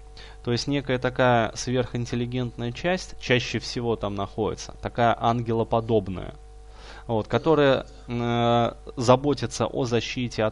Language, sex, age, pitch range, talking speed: Russian, male, 20-39, 110-125 Hz, 105 wpm